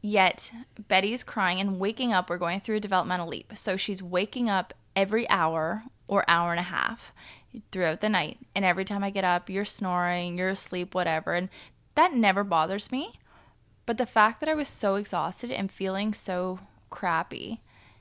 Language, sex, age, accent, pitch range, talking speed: English, female, 20-39, American, 175-210 Hz, 180 wpm